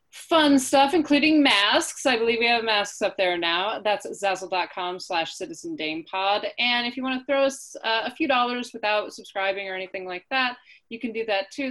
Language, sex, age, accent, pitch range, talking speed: English, female, 30-49, American, 175-230 Hz, 185 wpm